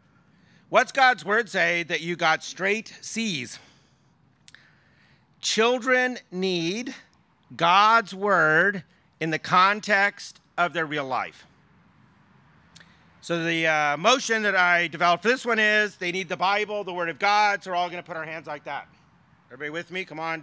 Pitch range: 165-210 Hz